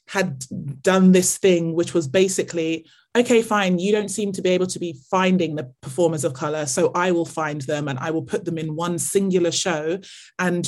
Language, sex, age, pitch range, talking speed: English, male, 20-39, 160-185 Hz, 210 wpm